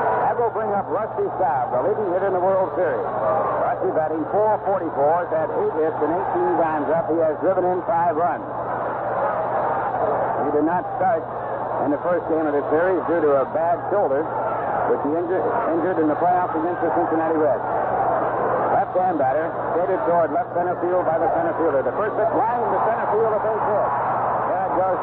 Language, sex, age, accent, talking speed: English, male, 60-79, American, 180 wpm